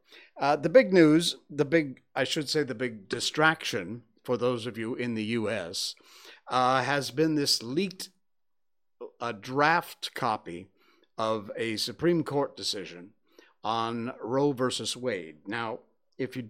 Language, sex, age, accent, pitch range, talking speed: English, male, 50-69, American, 110-150 Hz, 140 wpm